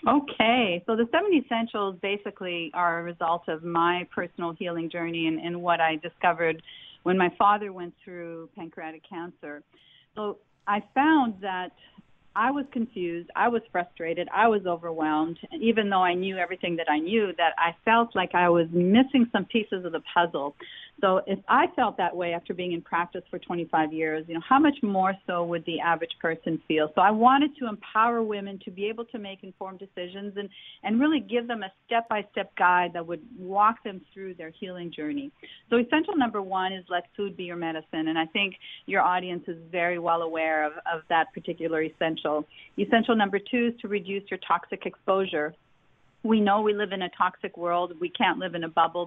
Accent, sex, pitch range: American, female, 170-210 Hz